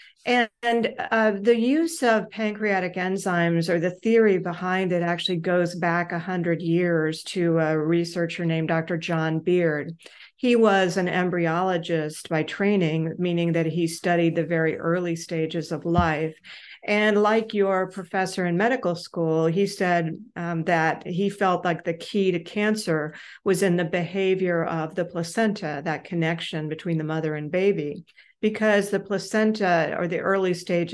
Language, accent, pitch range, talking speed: English, American, 170-200 Hz, 155 wpm